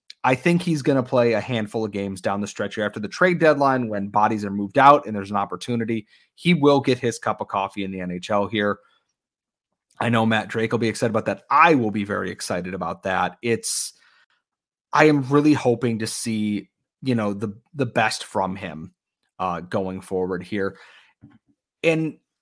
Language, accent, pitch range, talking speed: English, American, 105-130 Hz, 195 wpm